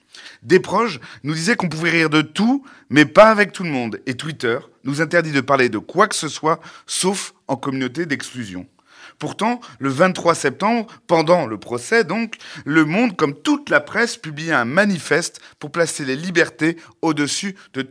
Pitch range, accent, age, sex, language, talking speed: 130-180 Hz, French, 30-49, male, French, 180 wpm